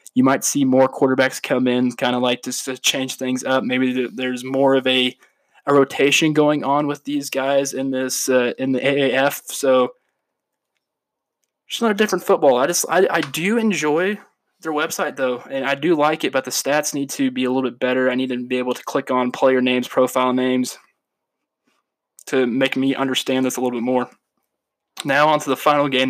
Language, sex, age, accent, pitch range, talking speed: English, male, 20-39, American, 125-145 Hz, 205 wpm